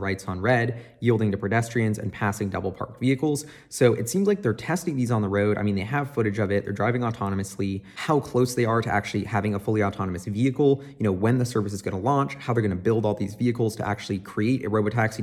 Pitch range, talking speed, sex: 100-125 Hz, 250 wpm, male